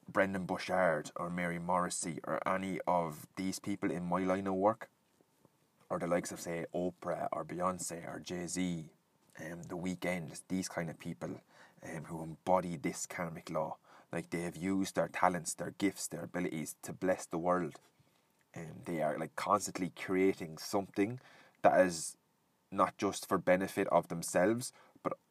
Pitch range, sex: 85-95 Hz, male